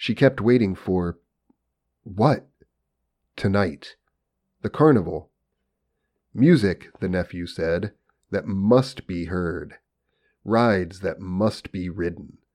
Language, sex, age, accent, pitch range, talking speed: English, male, 40-59, American, 90-115 Hz, 100 wpm